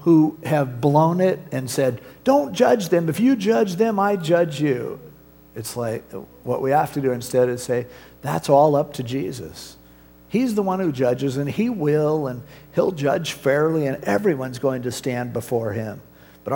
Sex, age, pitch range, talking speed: male, 50-69, 115-155 Hz, 185 wpm